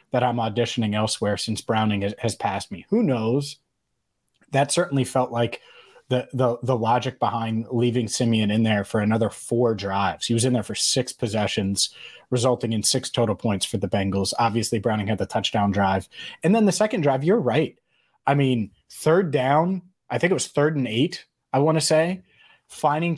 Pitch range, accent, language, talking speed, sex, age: 115-150 Hz, American, English, 185 wpm, male, 30-49